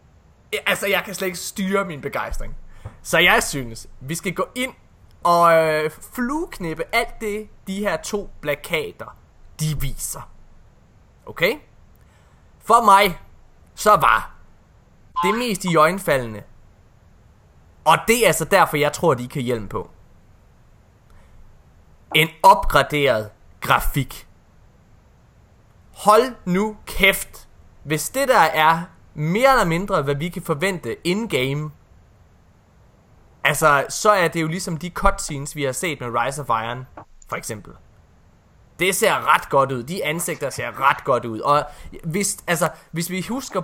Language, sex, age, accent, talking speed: Danish, male, 20-39, native, 135 wpm